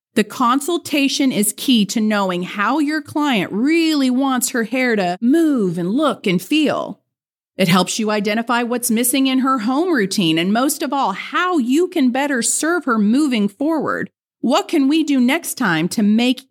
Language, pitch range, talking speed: English, 215-320 Hz, 180 wpm